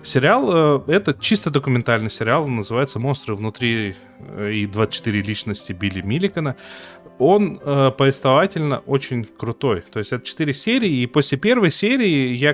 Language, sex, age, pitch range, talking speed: Russian, male, 20-39, 115-160 Hz, 135 wpm